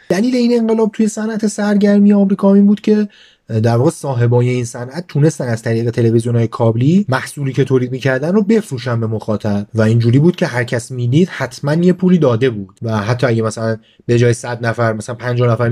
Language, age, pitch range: Persian, 30-49, 115-175 Hz